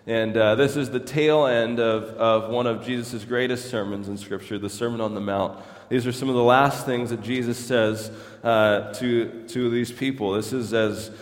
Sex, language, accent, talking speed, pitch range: male, English, American, 210 wpm, 110-135 Hz